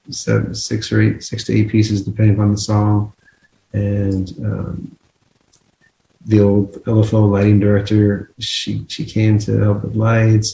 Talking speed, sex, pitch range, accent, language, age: 150 wpm, male, 100-110 Hz, American, English, 40-59